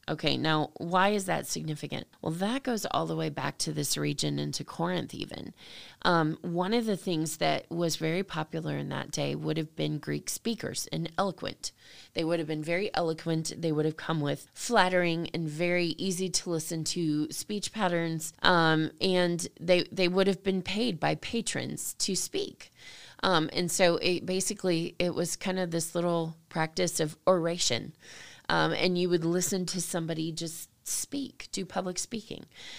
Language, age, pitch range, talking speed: English, 20-39, 160-185 Hz, 175 wpm